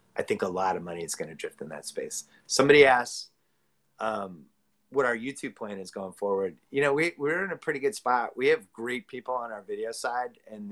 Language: English